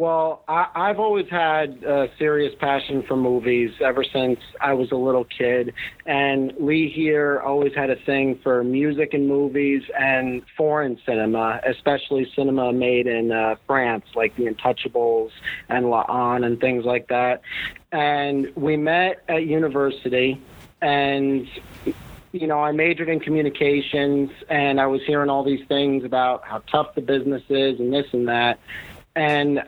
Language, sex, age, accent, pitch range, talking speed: English, male, 40-59, American, 120-145 Hz, 155 wpm